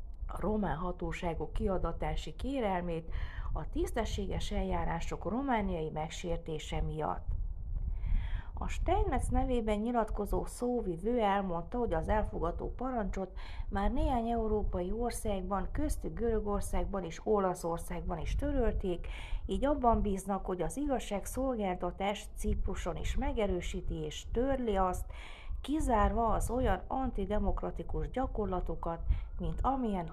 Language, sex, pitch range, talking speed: Hungarian, female, 155-220 Hz, 100 wpm